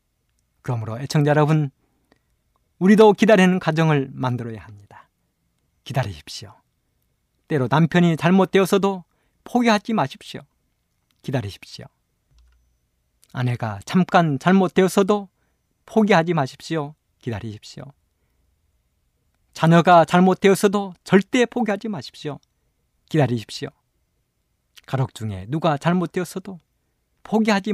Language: Korean